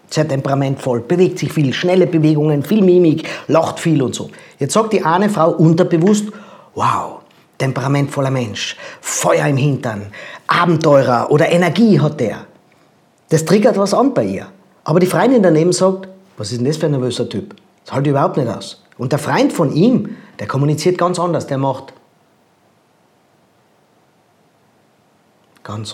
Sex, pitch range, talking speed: male, 150-200 Hz, 155 wpm